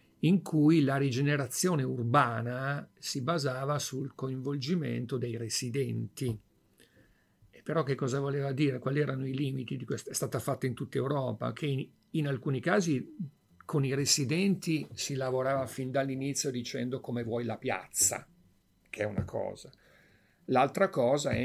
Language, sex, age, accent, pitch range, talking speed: English, male, 50-69, Italian, 115-145 Hz, 145 wpm